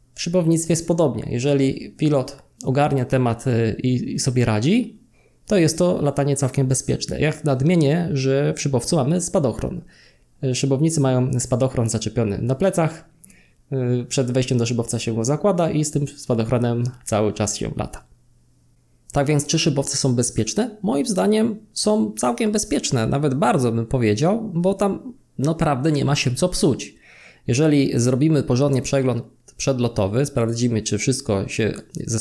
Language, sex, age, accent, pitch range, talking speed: Polish, male, 20-39, native, 115-145 Hz, 145 wpm